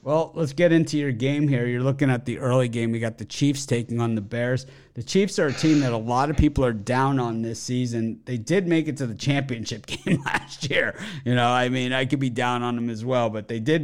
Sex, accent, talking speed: male, American, 265 wpm